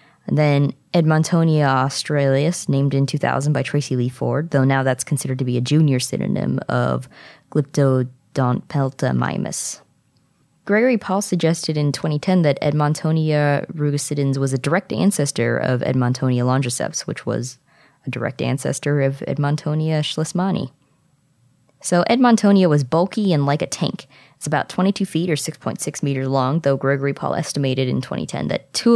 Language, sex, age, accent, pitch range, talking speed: English, female, 20-39, American, 130-165 Hz, 145 wpm